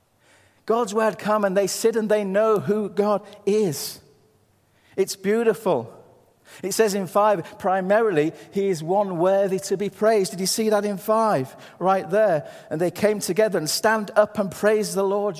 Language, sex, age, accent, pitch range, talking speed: English, male, 40-59, British, 130-215 Hz, 175 wpm